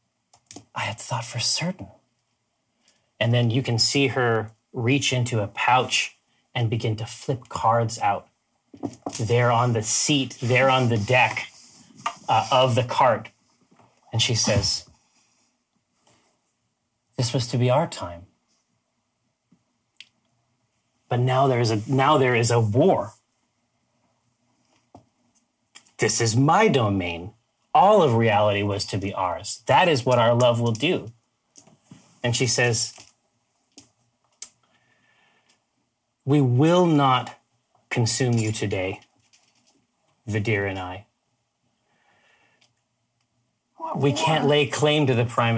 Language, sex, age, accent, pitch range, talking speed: English, male, 30-49, American, 110-130 Hz, 115 wpm